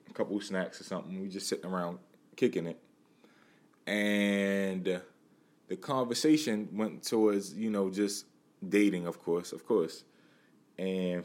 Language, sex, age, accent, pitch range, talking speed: English, male, 20-39, American, 85-100 Hz, 135 wpm